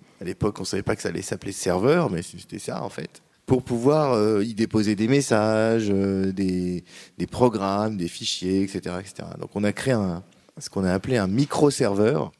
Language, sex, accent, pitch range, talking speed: French, male, French, 100-125 Hz, 205 wpm